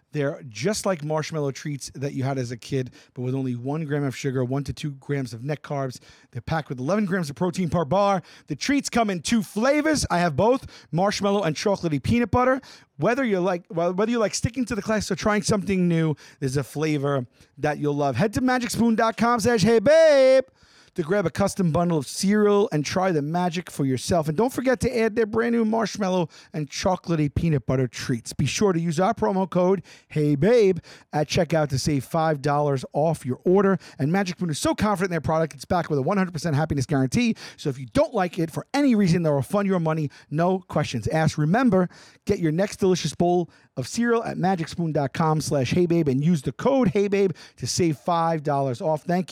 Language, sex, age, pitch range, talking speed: English, male, 40-59, 145-200 Hz, 210 wpm